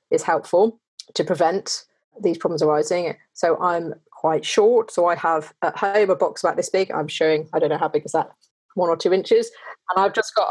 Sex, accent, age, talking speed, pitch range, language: female, British, 30-49, 215 wpm, 165-275 Hz, English